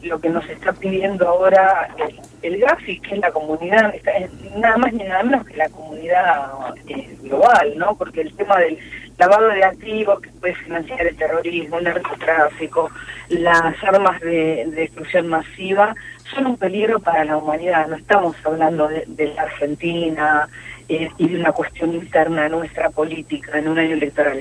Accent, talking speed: Argentinian, 165 wpm